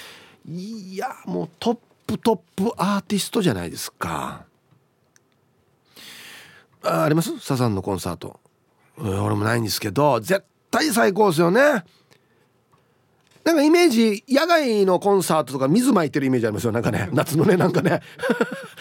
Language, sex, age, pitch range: Japanese, male, 40-59, 125-200 Hz